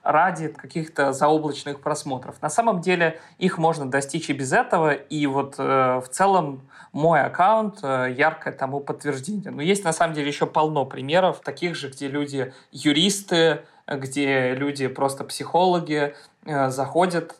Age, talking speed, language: 20-39, 150 wpm, Russian